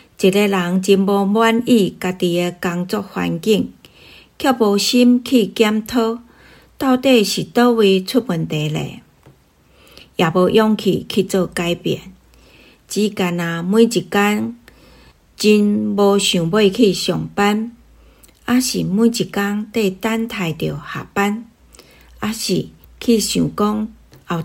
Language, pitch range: Chinese, 175-215 Hz